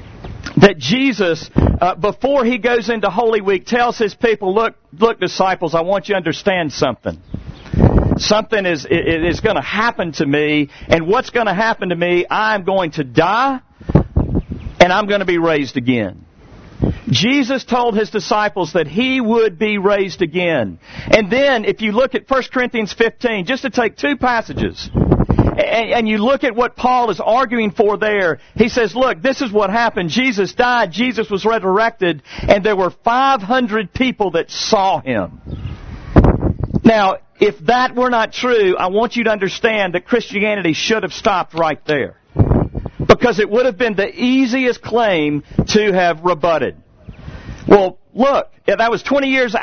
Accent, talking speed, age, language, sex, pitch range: American, 165 wpm, 50-69, English, male, 180-245 Hz